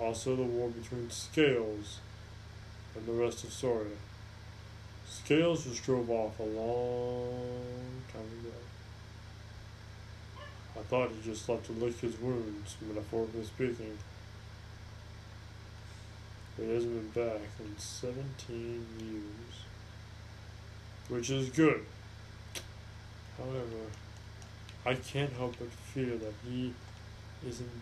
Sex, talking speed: male, 105 wpm